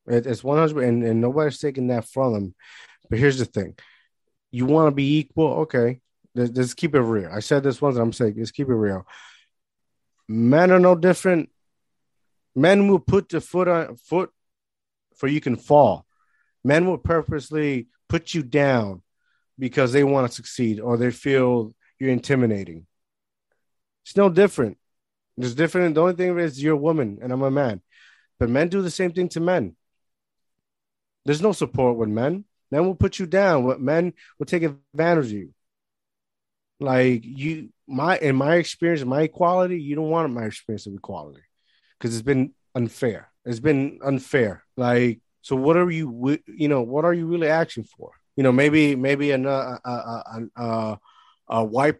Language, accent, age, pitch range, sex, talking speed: English, American, 30-49, 120-155 Hz, male, 175 wpm